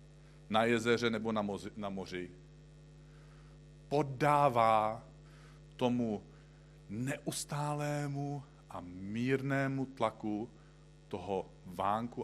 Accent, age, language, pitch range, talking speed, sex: native, 40-59, Czech, 125-155 Hz, 70 wpm, male